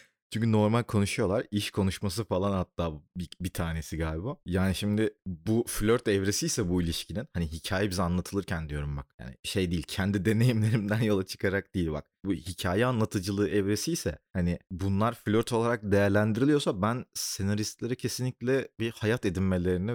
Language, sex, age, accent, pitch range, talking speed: Turkish, male, 30-49, native, 90-120 Hz, 145 wpm